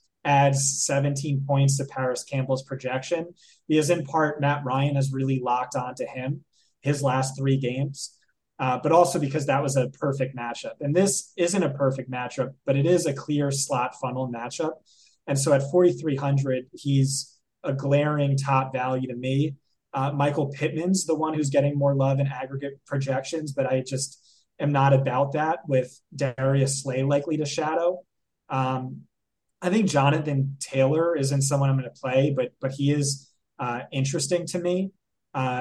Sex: male